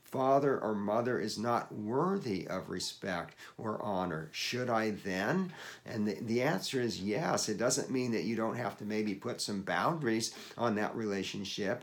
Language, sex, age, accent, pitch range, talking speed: English, male, 50-69, American, 105-140 Hz, 165 wpm